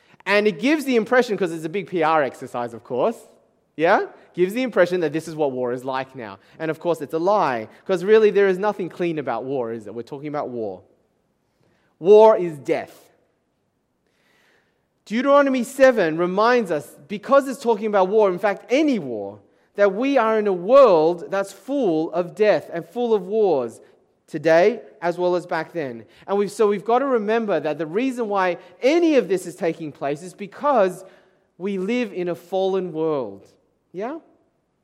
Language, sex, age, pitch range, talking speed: English, male, 30-49, 170-240 Hz, 185 wpm